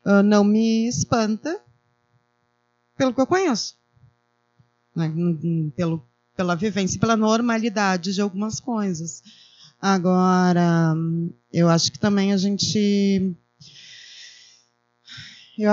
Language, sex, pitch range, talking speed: Portuguese, female, 155-230 Hz, 95 wpm